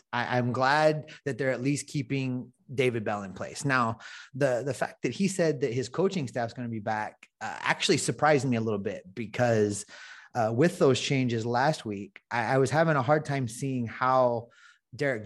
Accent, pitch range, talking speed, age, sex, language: American, 115-150 Hz, 200 wpm, 30-49, male, English